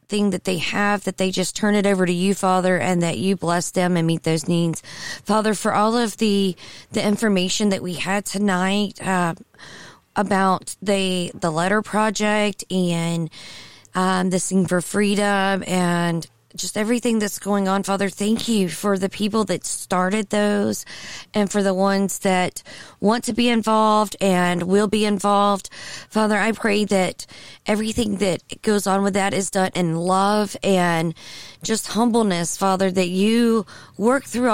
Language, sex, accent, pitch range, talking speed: English, female, American, 180-215 Hz, 165 wpm